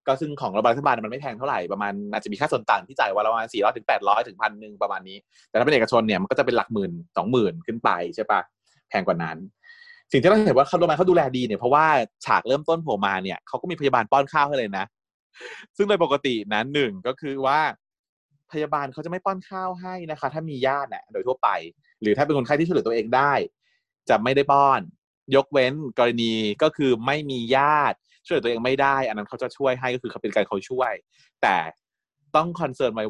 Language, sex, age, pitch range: Thai, male, 30-49, 125-170 Hz